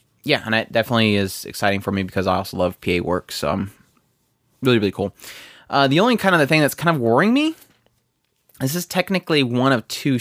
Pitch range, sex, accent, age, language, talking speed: 100-140 Hz, male, American, 20-39, English, 215 wpm